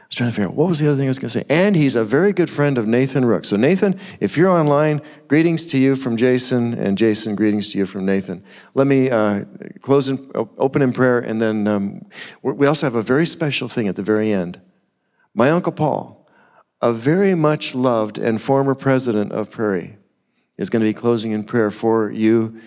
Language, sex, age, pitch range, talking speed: English, male, 50-69, 105-135 Hz, 225 wpm